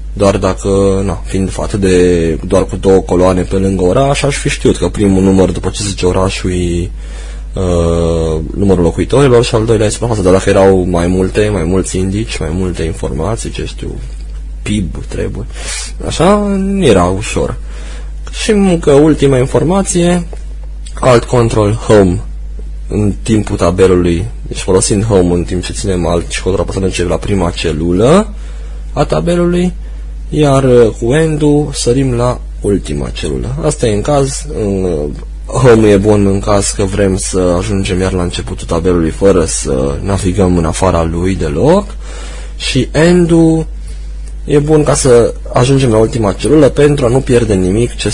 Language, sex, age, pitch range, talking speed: Romanian, male, 20-39, 85-115 Hz, 150 wpm